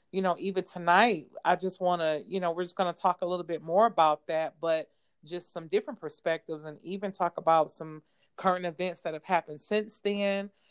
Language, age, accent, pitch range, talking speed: English, 30-49, American, 155-180 Hz, 215 wpm